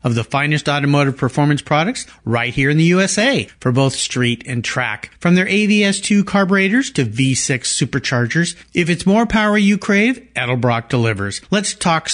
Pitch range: 130-210 Hz